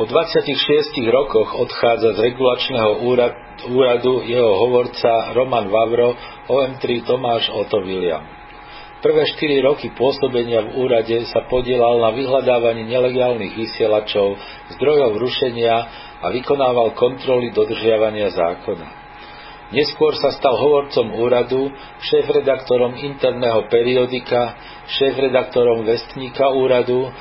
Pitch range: 115-135 Hz